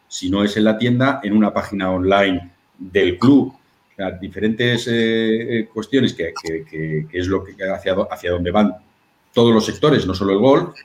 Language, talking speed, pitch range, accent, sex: Spanish, 195 wpm, 90-115 Hz, Spanish, male